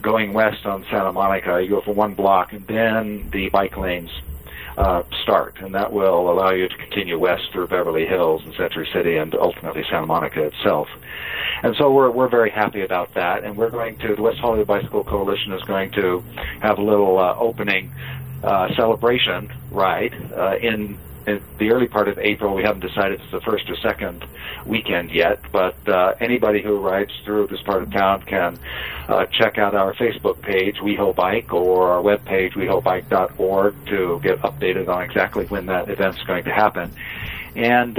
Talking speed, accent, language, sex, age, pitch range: 185 wpm, American, English, male, 50-69, 95-115 Hz